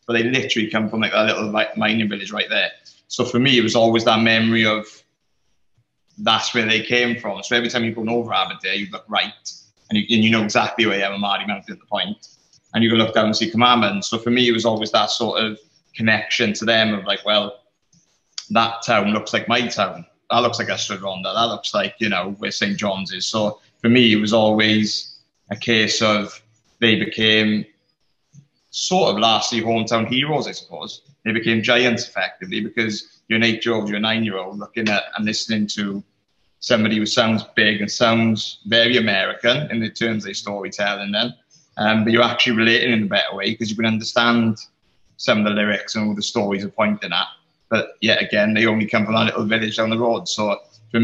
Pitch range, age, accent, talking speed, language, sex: 105-120 Hz, 20-39, British, 210 wpm, English, male